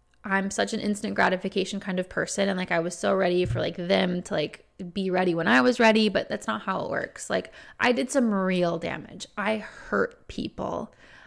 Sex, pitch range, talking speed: female, 190-230 Hz, 215 wpm